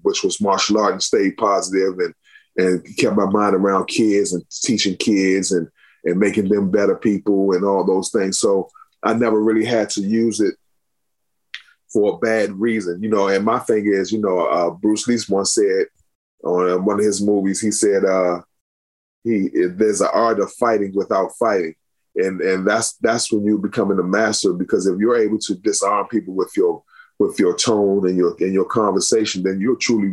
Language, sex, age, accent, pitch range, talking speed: English, male, 20-39, American, 100-120 Hz, 195 wpm